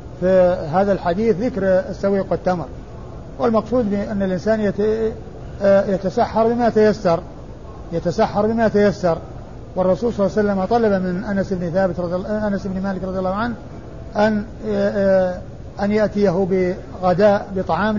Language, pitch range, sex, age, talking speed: Arabic, 185-215 Hz, male, 50-69, 125 wpm